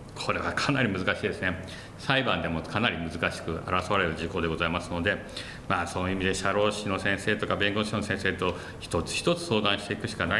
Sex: male